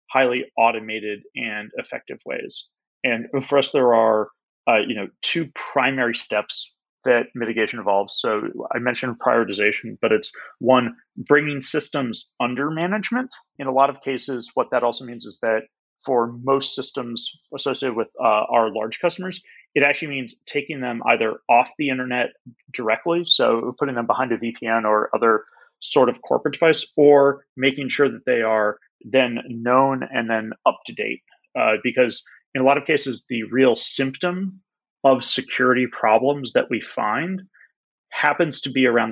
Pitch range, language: 115-140 Hz, English